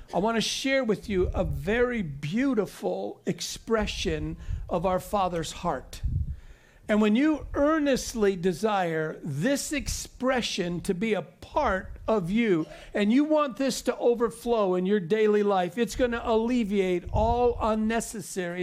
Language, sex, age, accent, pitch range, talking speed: English, male, 50-69, American, 170-220 Hz, 140 wpm